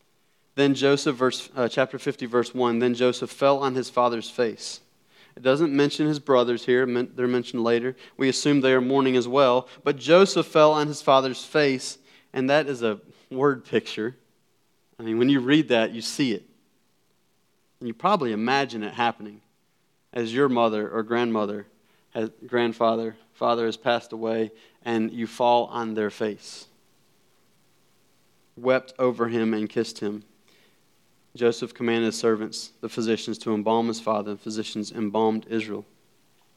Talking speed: 155 wpm